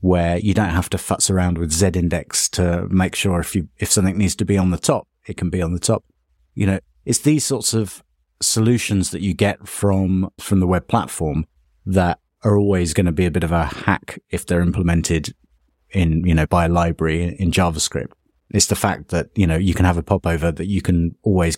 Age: 30-49